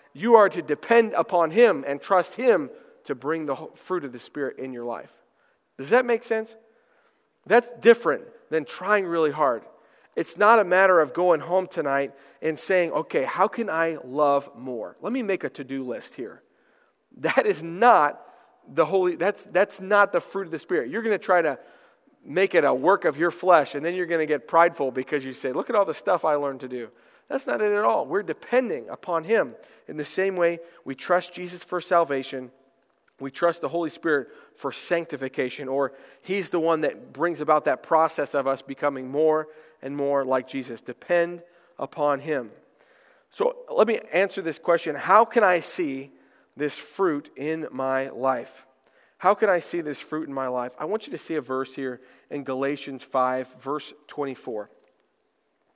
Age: 40-59